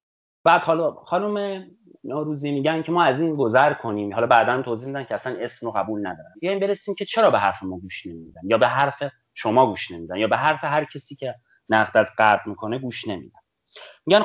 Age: 30-49